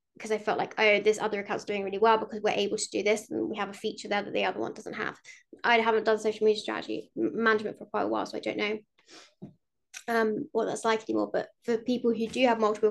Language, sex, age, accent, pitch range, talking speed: English, female, 20-39, British, 220-265 Hz, 260 wpm